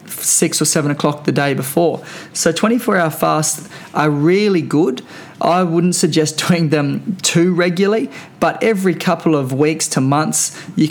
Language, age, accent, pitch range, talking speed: English, 20-39, Australian, 145-170 Hz, 155 wpm